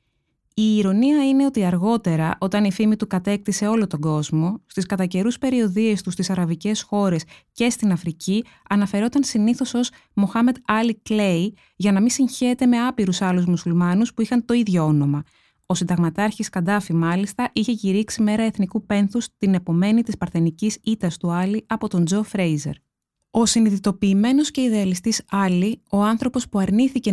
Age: 20-39